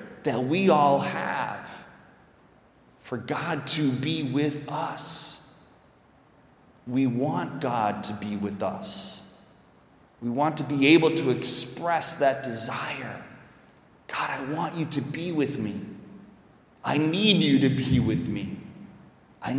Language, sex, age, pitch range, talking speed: English, male, 30-49, 110-145 Hz, 130 wpm